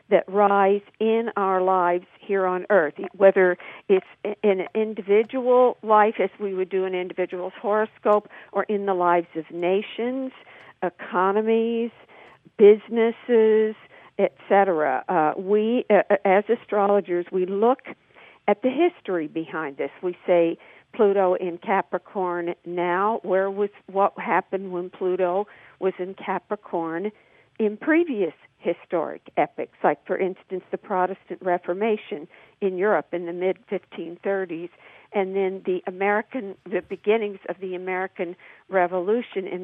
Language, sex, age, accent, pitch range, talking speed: English, female, 50-69, American, 180-210 Hz, 125 wpm